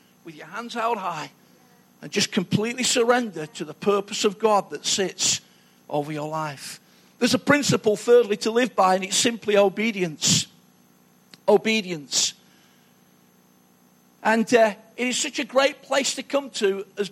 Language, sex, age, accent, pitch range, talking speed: English, male, 50-69, British, 190-250 Hz, 150 wpm